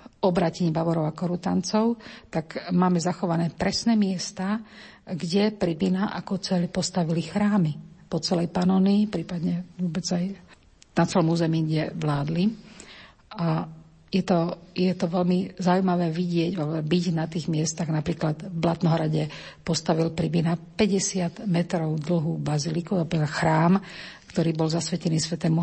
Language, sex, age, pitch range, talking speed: Slovak, female, 50-69, 165-185 Hz, 125 wpm